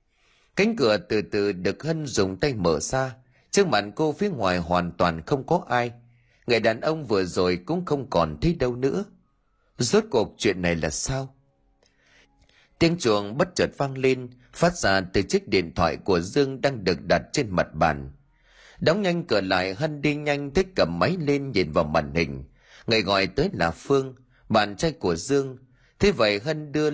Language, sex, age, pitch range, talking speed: Vietnamese, male, 30-49, 100-150 Hz, 190 wpm